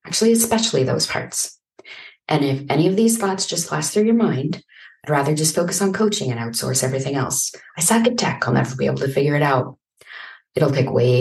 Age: 30-49